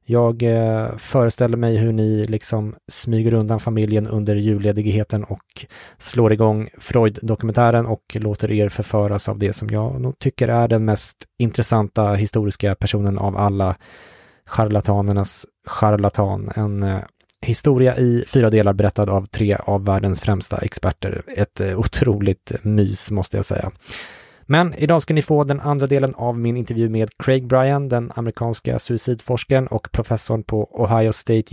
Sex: male